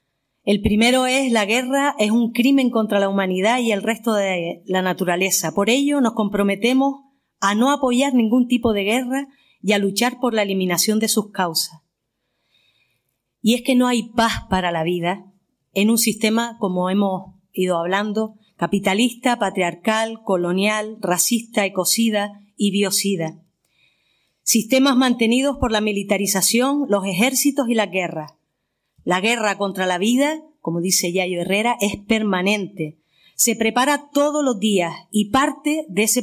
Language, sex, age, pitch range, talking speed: Spanish, female, 30-49, 190-240 Hz, 150 wpm